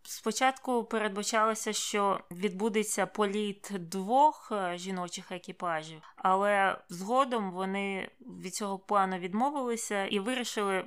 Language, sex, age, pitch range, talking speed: Ukrainian, female, 20-39, 190-230 Hz, 95 wpm